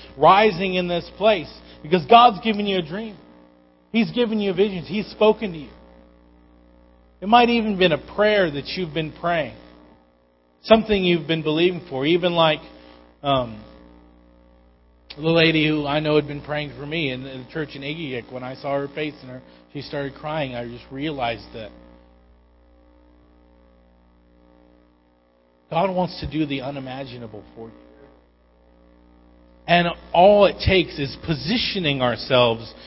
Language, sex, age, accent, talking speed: English, male, 40-59, American, 150 wpm